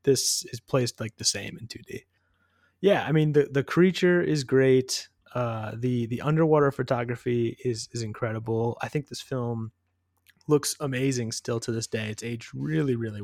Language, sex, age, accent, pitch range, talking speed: English, male, 20-39, American, 110-135 Hz, 170 wpm